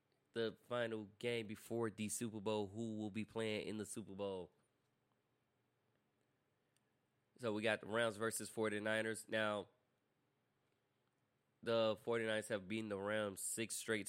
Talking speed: 130 wpm